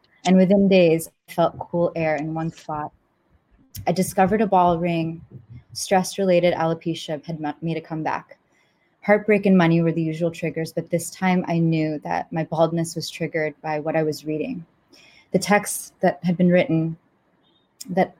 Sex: female